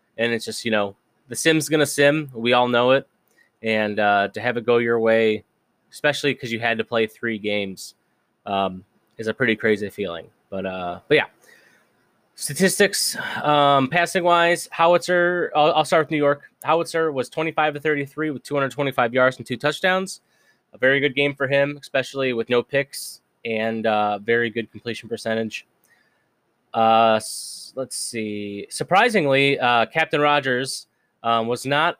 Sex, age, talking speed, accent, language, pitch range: male, 20-39, 160 wpm, American, English, 110-145 Hz